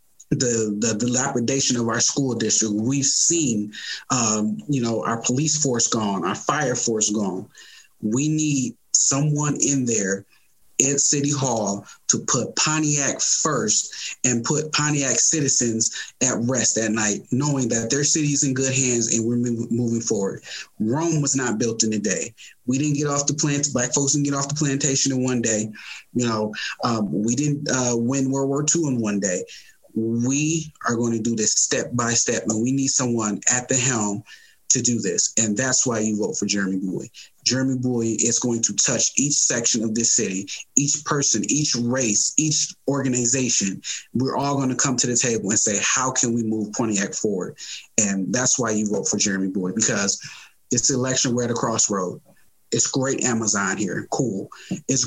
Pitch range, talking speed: 110-135 Hz, 185 wpm